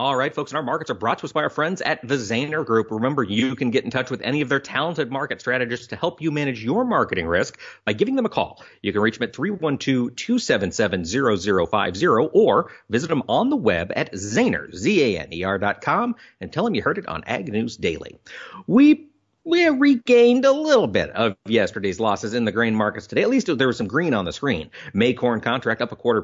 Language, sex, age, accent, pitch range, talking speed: English, male, 40-59, American, 115-165 Hz, 220 wpm